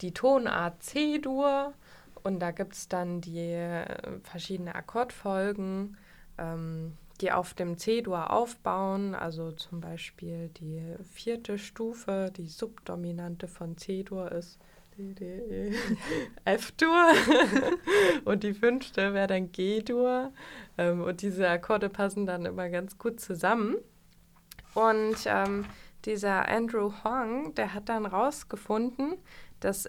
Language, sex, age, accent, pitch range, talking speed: German, female, 20-39, German, 180-225 Hz, 110 wpm